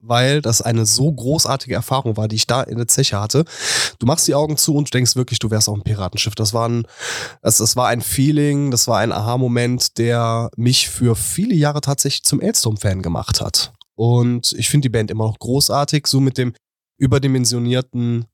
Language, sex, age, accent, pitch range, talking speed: German, male, 20-39, German, 110-130 Hz, 205 wpm